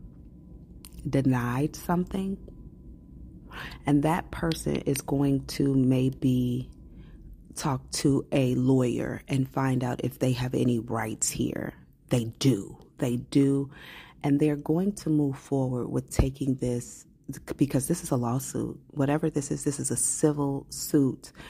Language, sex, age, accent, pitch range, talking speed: English, female, 30-49, American, 125-150 Hz, 135 wpm